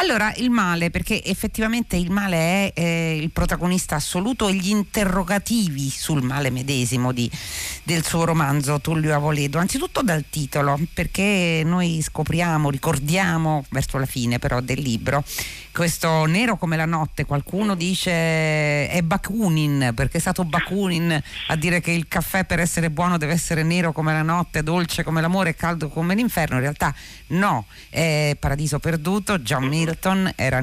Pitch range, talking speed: 140-185 Hz, 155 wpm